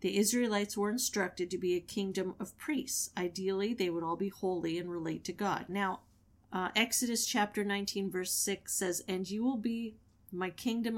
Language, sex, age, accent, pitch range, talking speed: English, female, 40-59, American, 175-215 Hz, 185 wpm